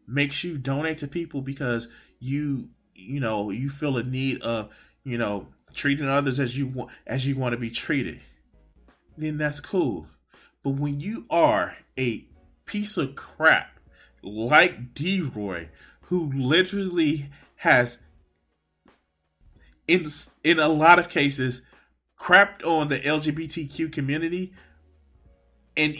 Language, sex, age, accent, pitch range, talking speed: English, male, 20-39, American, 120-160 Hz, 125 wpm